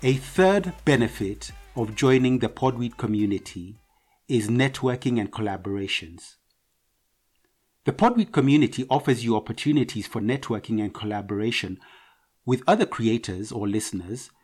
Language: English